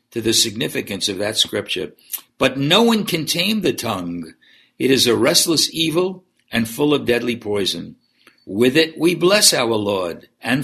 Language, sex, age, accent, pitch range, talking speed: English, male, 60-79, American, 110-145 Hz, 170 wpm